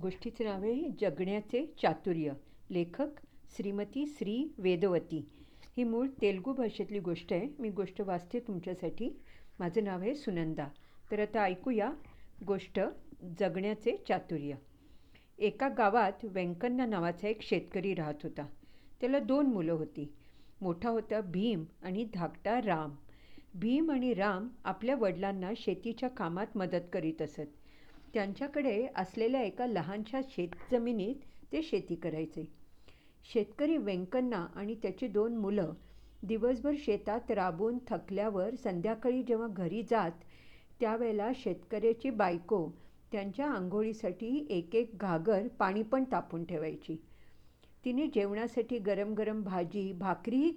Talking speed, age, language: 90 wpm, 50-69, English